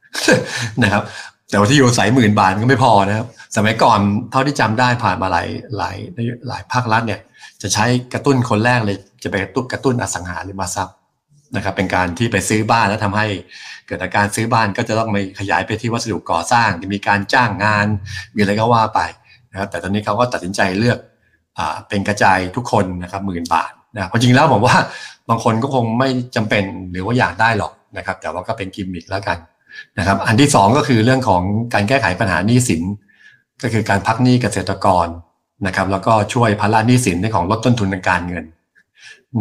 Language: Thai